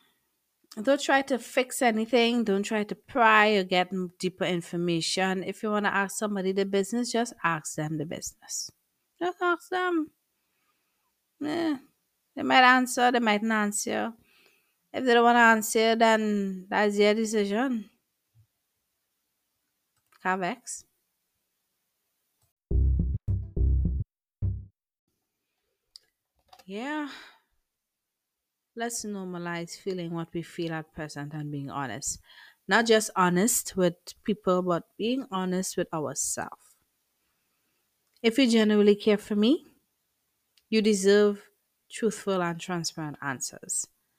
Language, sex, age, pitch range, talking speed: English, female, 30-49, 170-230 Hz, 110 wpm